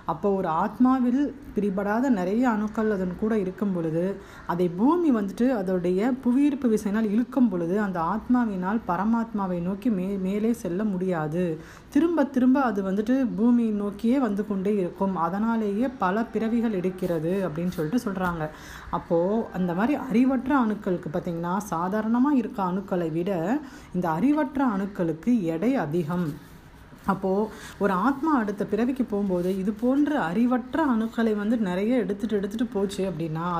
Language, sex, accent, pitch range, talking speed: Tamil, female, native, 180-245 Hz, 125 wpm